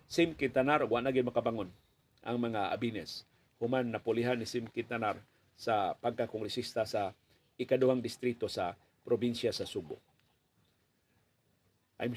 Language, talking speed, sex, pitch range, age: Filipino, 115 wpm, male, 120-135 Hz, 40-59